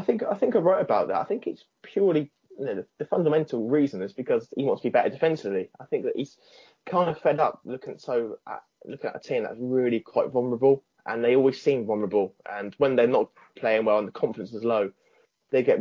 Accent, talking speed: British, 240 wpm